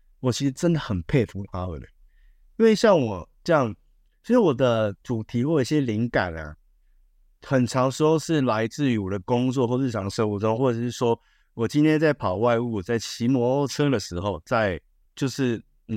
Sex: male